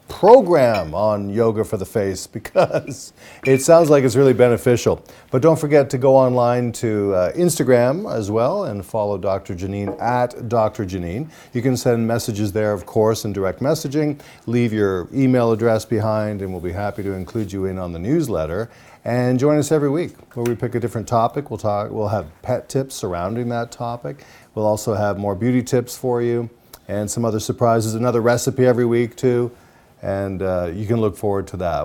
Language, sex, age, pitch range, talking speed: English, male, 40-59, 105-130 Hz, 190 wpm